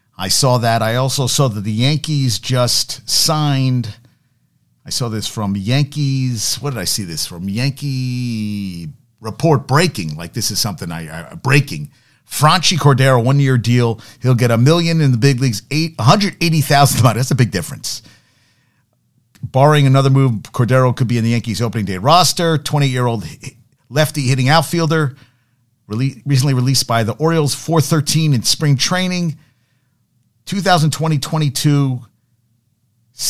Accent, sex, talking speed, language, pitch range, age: American, male, 140 wpm, English, 115-145 Hz, 50-69